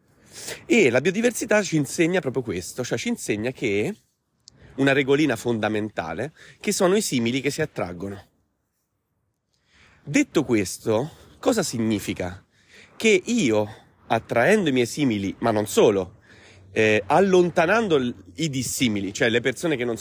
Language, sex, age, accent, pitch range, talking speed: Italian, male, 30-49, native, 105-160 Hz, 130 wpm